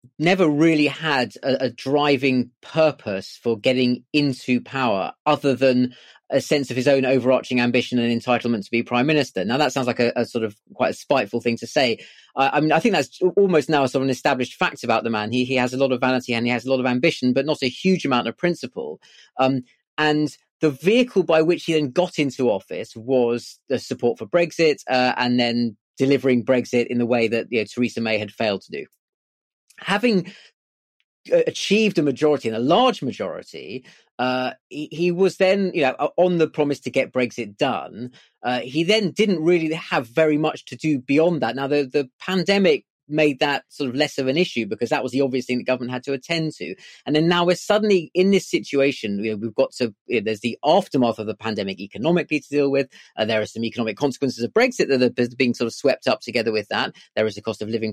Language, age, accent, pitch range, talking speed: English, 30-49, British, 120-155 Hz, 220 wpm